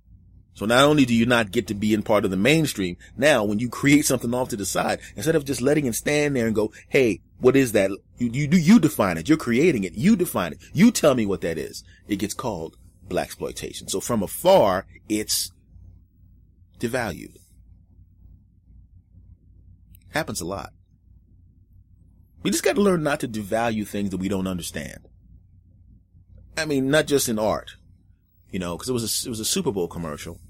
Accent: American